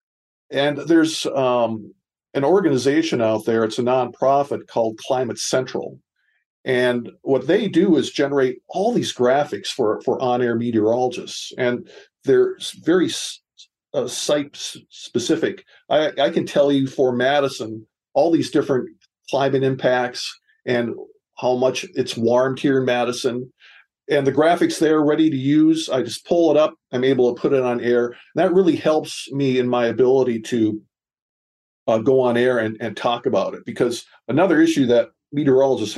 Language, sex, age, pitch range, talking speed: English, male, 50-69, 120-150 Hz, 150 wpm